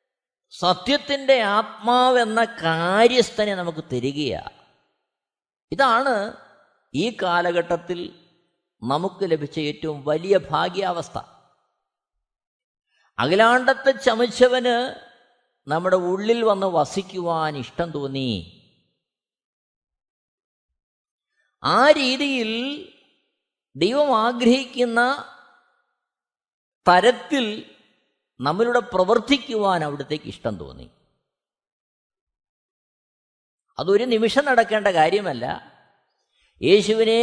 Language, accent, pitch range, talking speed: Malayalam, native, 175-255 Hz, 55 wpm